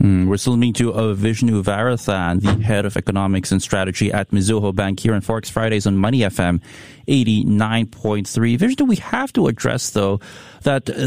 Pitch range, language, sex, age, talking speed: 100-125 Hz, English, male, 30-49, 170 wpm